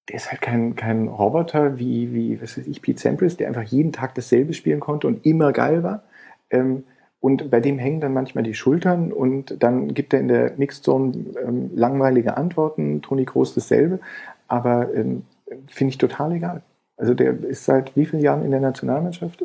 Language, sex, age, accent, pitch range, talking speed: German, male, 40-59, German, 115-145 Hz, 190 wpm